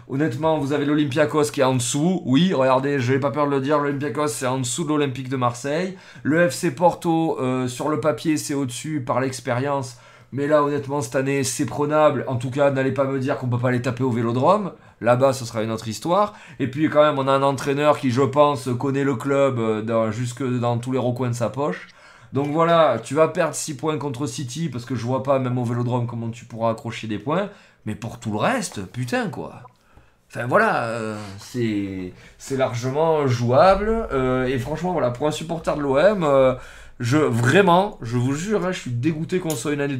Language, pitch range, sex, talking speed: French, 120-145 Hz, male, 220 wpm